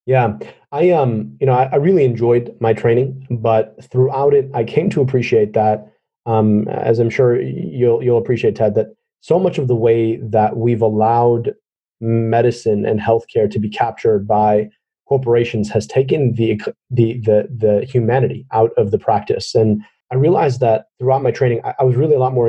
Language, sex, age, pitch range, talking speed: English, male, 30-49, 110-130 Hz, 185 wpm